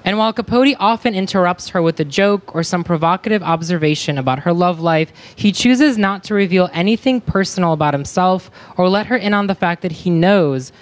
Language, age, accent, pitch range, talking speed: English, 10-29, American, 145-195 Hz, 200 wpm